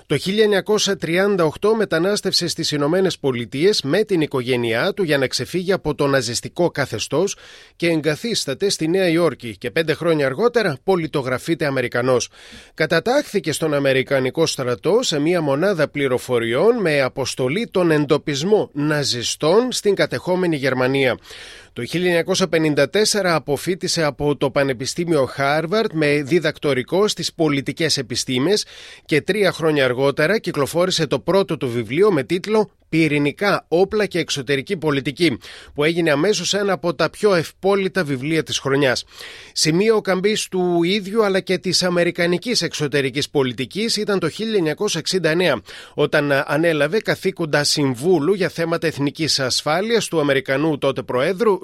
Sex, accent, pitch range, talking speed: male, native, 140-185 Hz, 125 wpm